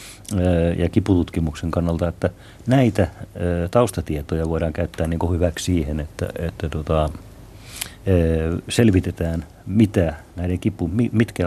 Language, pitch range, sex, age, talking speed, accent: Finnish, 85-105 Hz, male, 50-69, 100 wpm, native